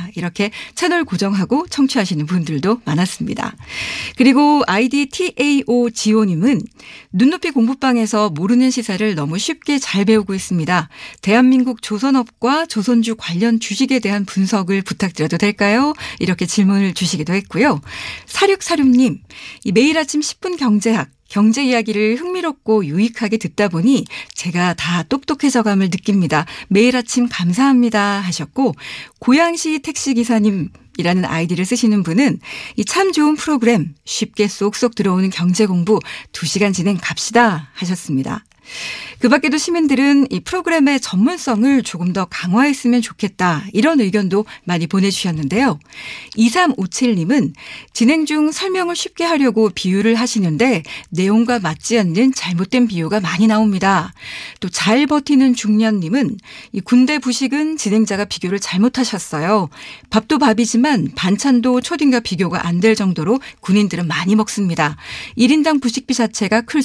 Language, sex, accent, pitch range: Korean, female, native, 190-260 Hz